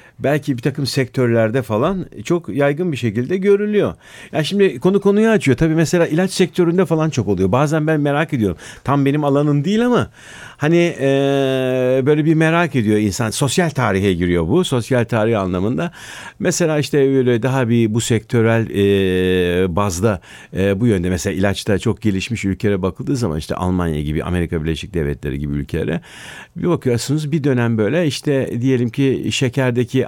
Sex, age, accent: male, 50-69, native